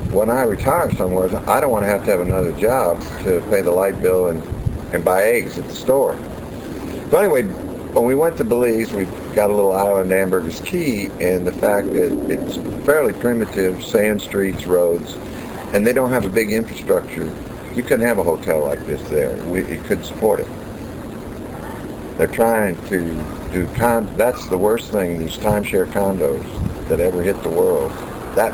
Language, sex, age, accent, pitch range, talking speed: English, male, 60-79, American, 85-110 Hz, 185 wpm